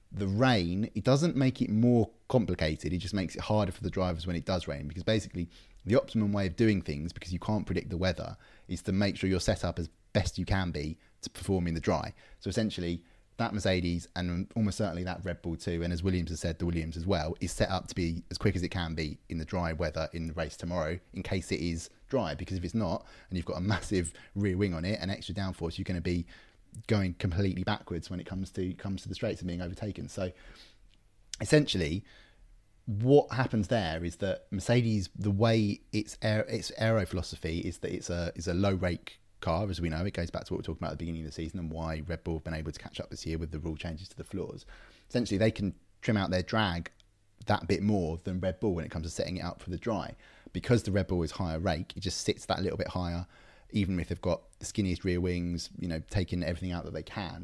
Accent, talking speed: British, 255 wpm